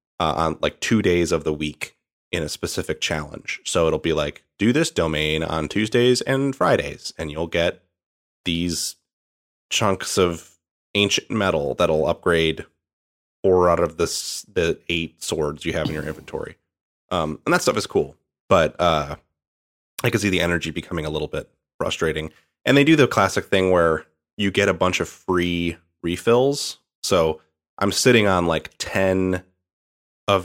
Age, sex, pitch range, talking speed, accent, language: 30-49, male, 80-95 Hz, 165 wpm, American, English